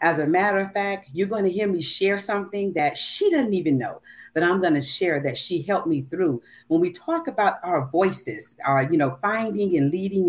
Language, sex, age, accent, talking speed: English, female, 40-59, American, 215 wpm